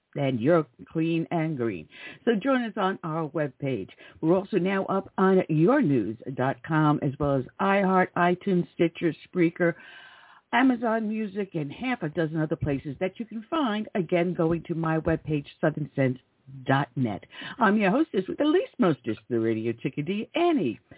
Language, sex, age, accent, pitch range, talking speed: English, female, 60-79, American, 145-200 Hz, 155 wpm